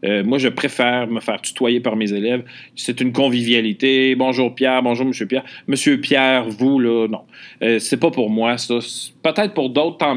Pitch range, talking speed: 125-165 Hz, 190 wpm